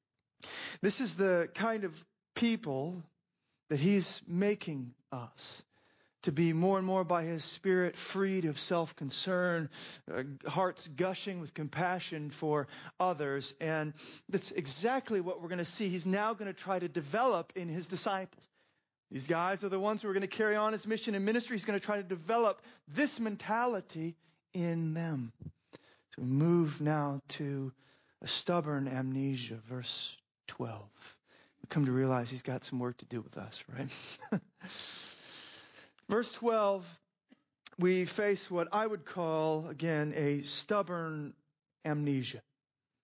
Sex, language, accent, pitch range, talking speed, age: male, English, American, 155-200 Hz, 145 wpm, 40-59